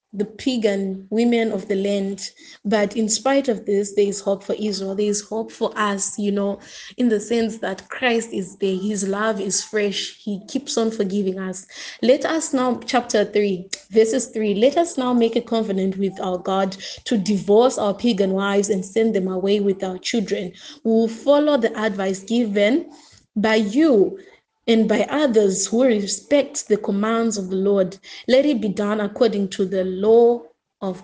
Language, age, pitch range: English, 20-39, 200-235 Hz